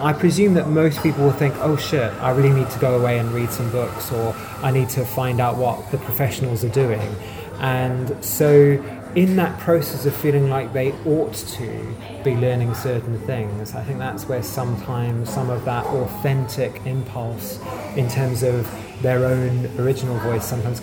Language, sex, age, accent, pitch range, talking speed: English, male, 20-39, British, 120-140 Hz, 180 wpm